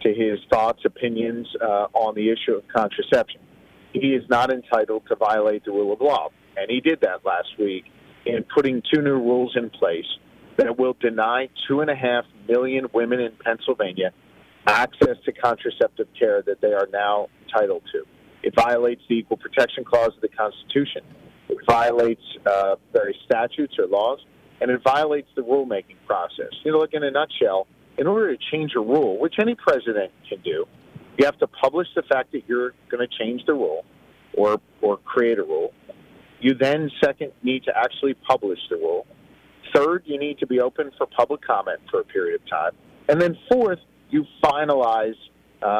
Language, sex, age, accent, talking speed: English, male, 40-59, American, 185 wpm